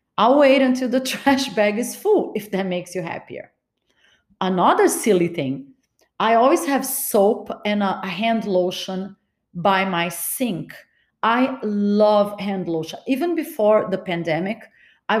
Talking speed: 140 wpm